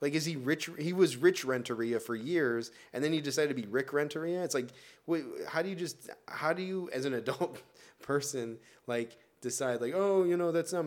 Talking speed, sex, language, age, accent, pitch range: 230 wpm, male, English, 20-39, American, 100-140 Hz